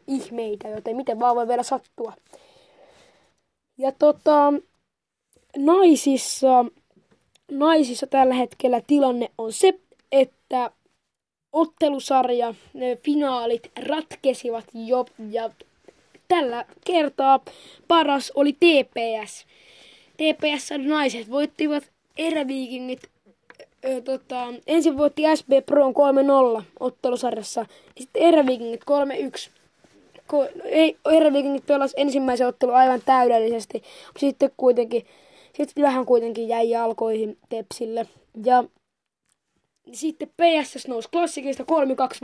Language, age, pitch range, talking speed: Finnish, 20-39, 235-290 Hz, 95 wpm